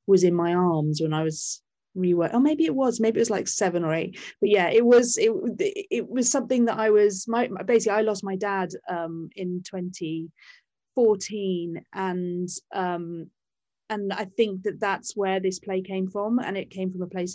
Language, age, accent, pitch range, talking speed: English, 30-49, British, 180-225 Hz, 200 wpm